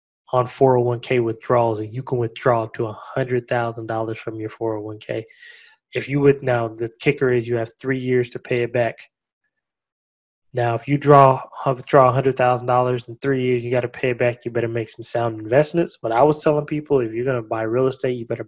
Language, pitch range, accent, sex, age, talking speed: English, 115-140 Hz, American, male, 20-39, 225 wpm